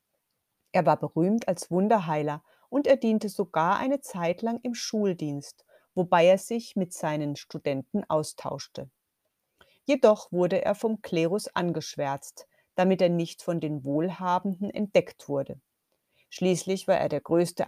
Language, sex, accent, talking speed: German, female, German, 135 wpm